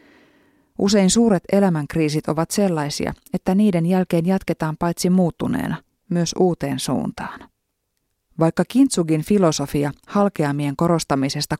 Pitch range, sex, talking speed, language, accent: 145-185 Hz, female, 100 wpm, Finnish, native